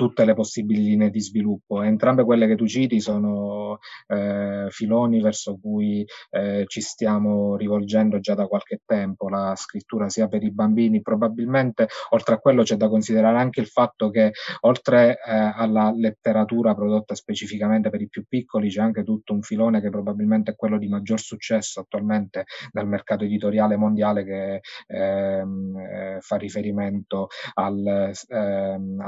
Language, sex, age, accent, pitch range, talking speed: Italian, male, 20-39, native, 100-110 Hz, 150 wpm